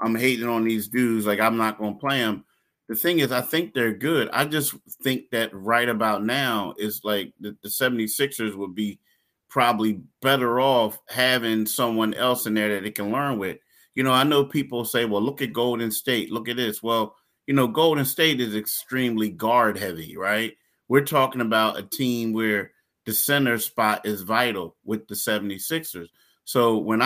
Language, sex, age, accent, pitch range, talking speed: English, male, 30-49, American, 110-130 Hz, 190 wpm